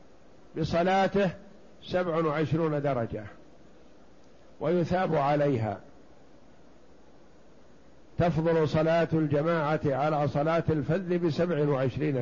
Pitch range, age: 145-170 Hz, 50-69